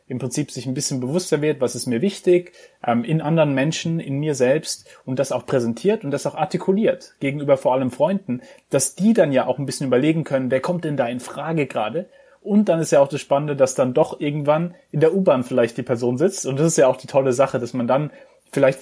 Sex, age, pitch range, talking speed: male, 30-49, 125-150 Hz, 240 wpm